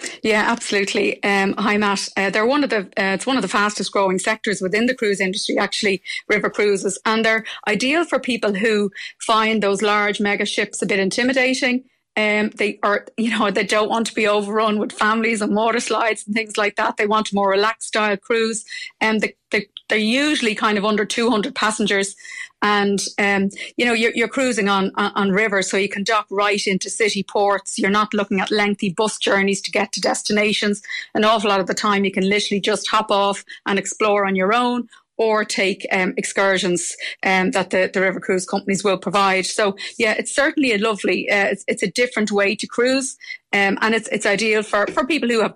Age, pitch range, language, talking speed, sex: 30-49, 200-225 Hz, English, 210 wpm, female